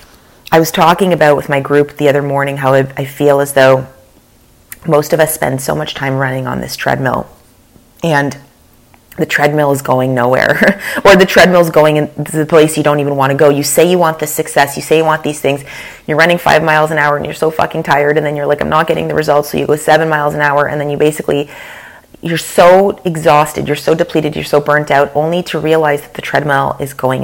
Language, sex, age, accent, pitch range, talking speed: English, female, 30-49, American, 135-160 Hz, 240 wpm